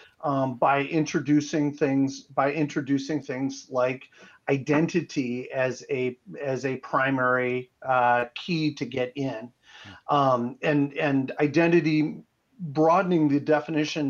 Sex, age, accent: male, 40-59, American